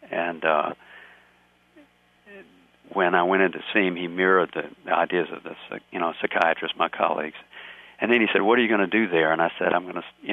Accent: American